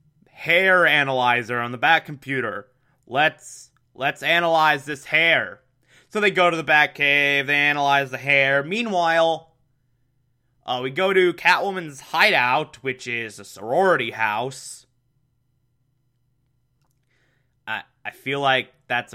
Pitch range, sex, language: 125-145 Hz, male, English